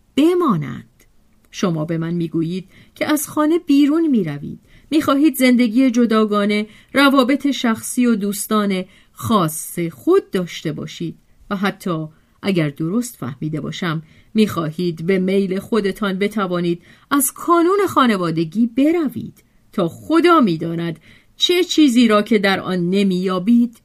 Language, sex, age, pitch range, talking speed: Persian, female, 40-59, 165-255 Hz, 115 wpm